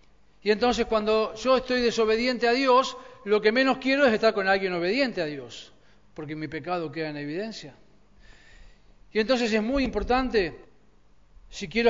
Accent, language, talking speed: Argentinian, Spanish, 160 wpm